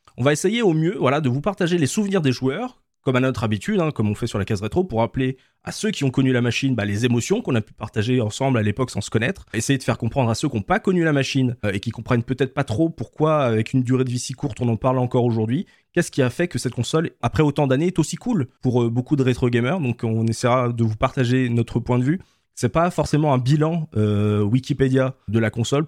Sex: male